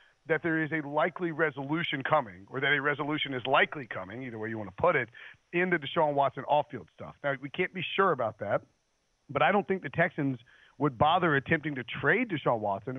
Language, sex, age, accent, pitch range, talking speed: English, male, 40-59, American, 130-155 Hz, 215 wpm